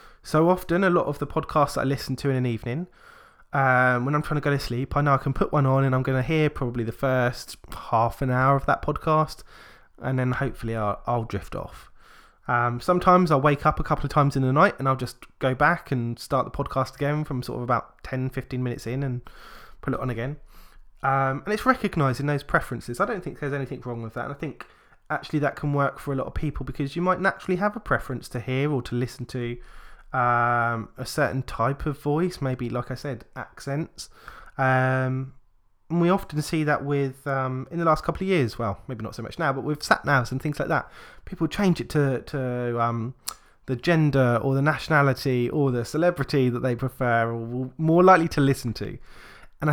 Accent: British